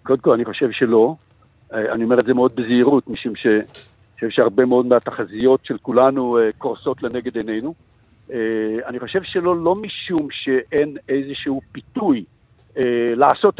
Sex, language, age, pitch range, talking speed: male, Hebrew, 60-79, 120-155 Hz, 130 wpm